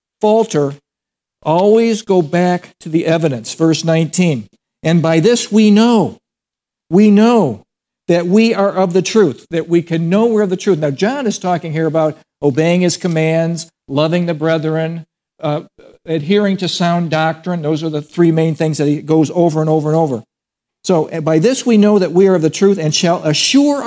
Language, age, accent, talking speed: English, 60-79, American, 190 wpm